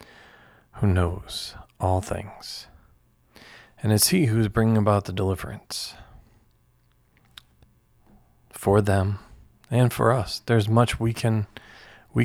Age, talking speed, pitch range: 40-59, 120 wpm, 95-115 Hz